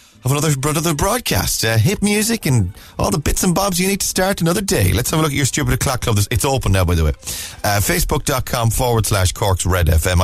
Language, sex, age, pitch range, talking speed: English, male, 30-49, 110-155 Hz, 235 wpm